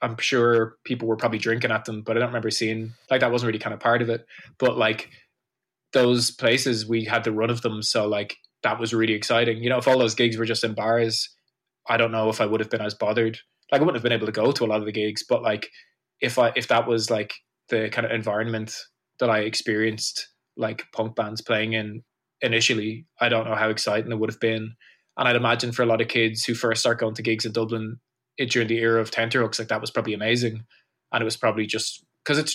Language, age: English, 20-39